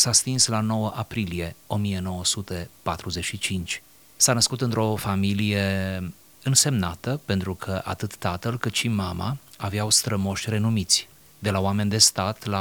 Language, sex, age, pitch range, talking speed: Romanian, male, 30-49, 90-110 Hz, 130 wpm